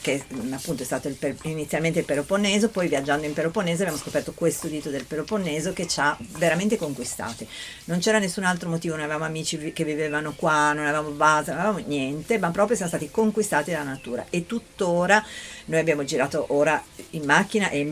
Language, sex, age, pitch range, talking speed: Italian, female, 50-69, 140-175 Hz, 195 wpm